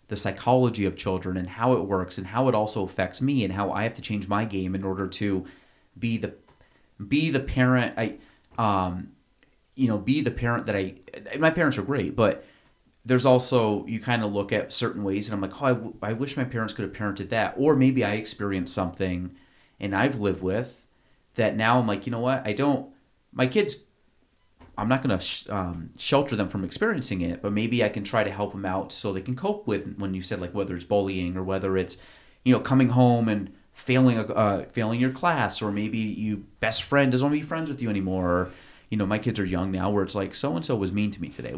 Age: 30-49